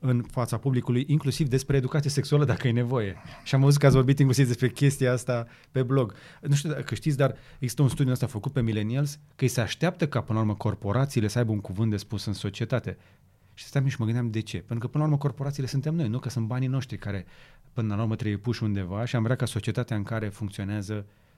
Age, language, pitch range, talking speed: 30-49, Romanian, 105-135 Hz, 240 wpm